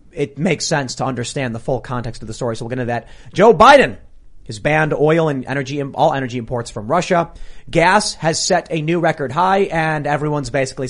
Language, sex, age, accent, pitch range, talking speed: English, male, 30-49, American, 130-175 Hz, 215 wpm